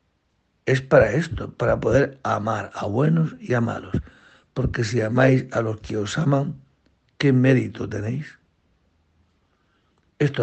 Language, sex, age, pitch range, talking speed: Spanish, male, 60-79, 105-140 Hz, 130 wpm